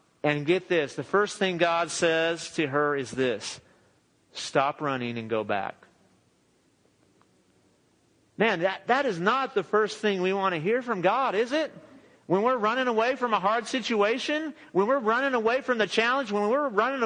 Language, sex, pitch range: English, male, 180-235 Hz